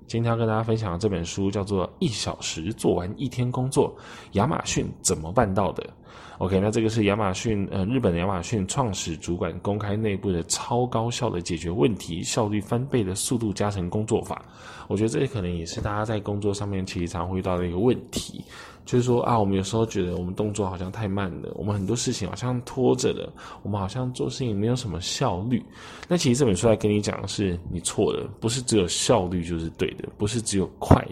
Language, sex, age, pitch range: Chinese, male, 10-29, 90-115 Hz